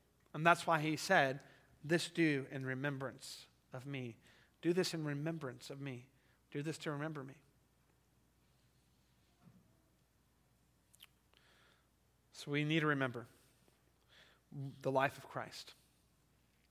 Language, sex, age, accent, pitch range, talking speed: English, male, 30-49, American, 135-165 Hz, 110 wpm